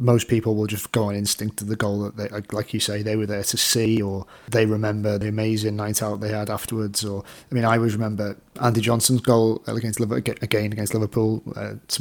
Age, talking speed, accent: 30-49, 230 wpm, British